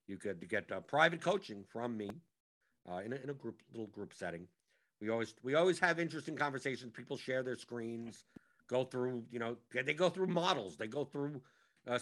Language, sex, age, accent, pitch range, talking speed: English, male, 50-69, American, 120-160 Hz, 200 wpm